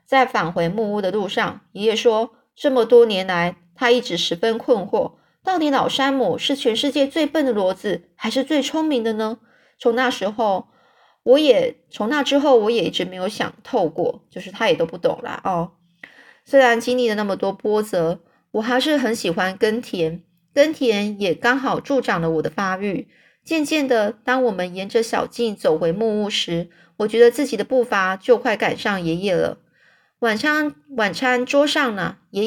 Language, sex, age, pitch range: Chinese, female, 20-39, 195-260 Hz